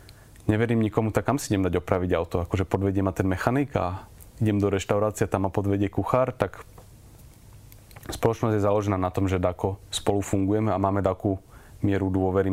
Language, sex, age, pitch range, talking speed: Slovak, male, 30-49, 95-115 Hz, 175 wpm